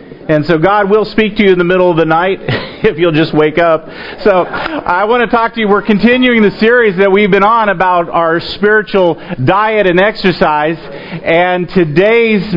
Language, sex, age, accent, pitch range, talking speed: English, male, 40-59, American, 170-205 Hz, 195 wpm